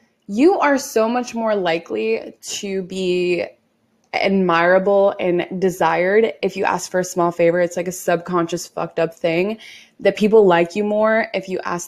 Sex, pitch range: female, 175-215 Hz